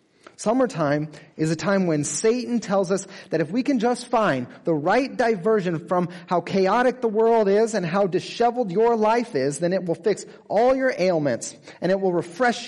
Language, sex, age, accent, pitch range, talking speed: English, male, 30-49, American, 145-215 Hz, 190 wpm